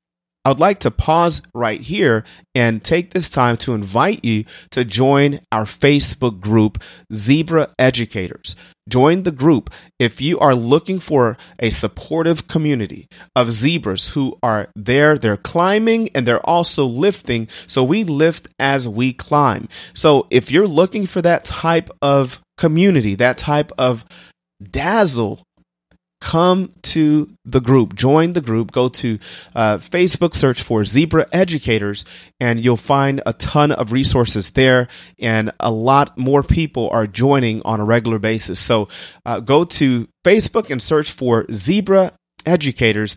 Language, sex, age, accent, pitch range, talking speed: English, male, 30-49, American, 115-160 Hz, 145 wpm